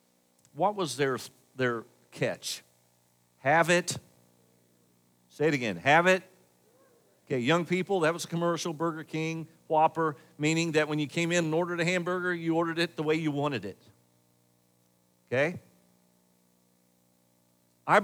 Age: 50-69